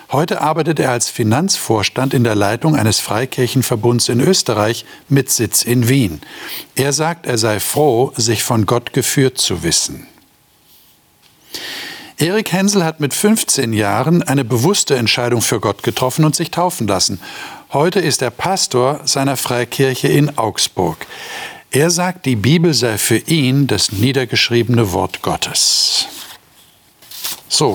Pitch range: 110-145 Hz